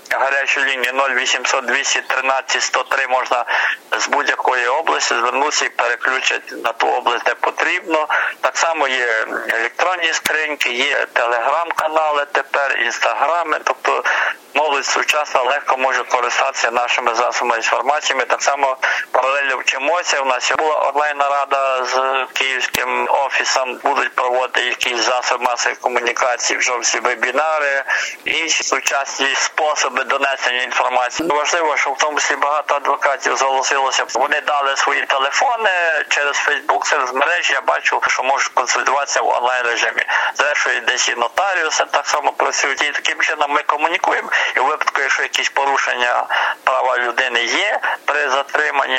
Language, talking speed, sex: Ukrainian, 130 wpm, male